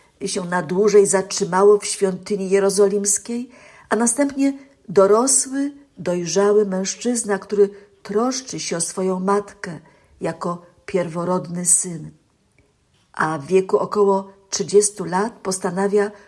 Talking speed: 105 wpm